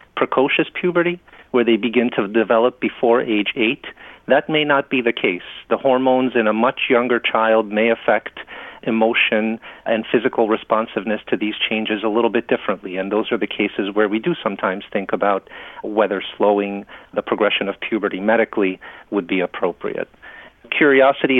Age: 40-59